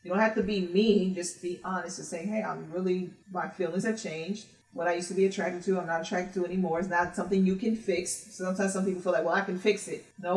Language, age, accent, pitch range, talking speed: English, 30-49, American, 175-200 Hz, 270 wpm